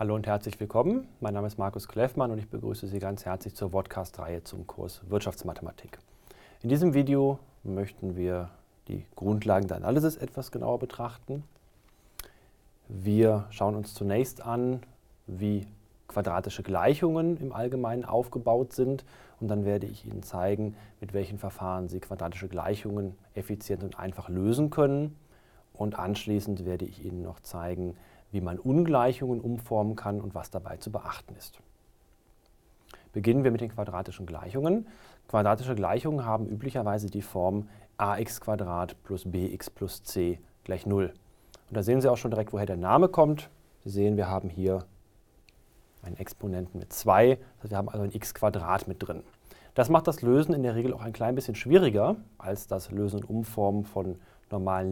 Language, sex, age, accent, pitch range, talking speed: German, male, 30-49, German, 95-120 Hz, 160 wpm